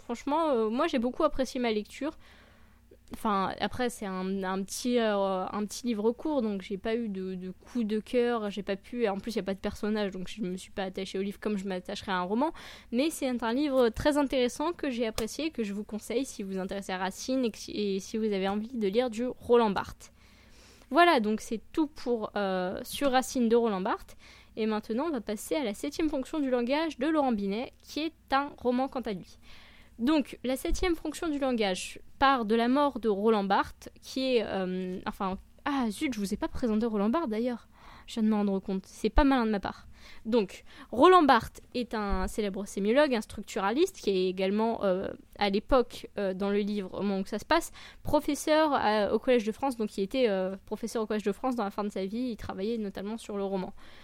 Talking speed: 235 wpm